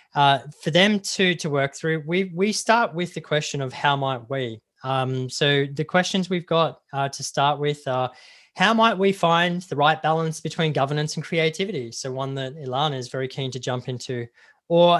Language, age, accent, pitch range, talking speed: English, 20-39, Australian, 135-170 Hz, 200 wpm